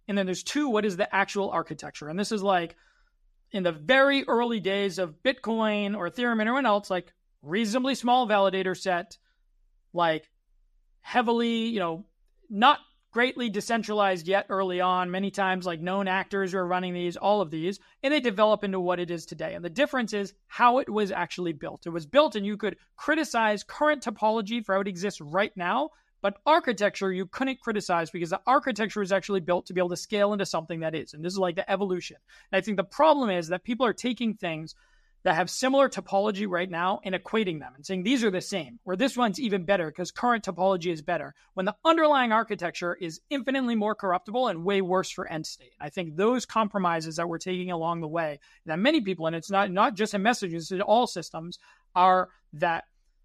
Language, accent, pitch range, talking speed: English, American, 180-235 Hz, 210 wpm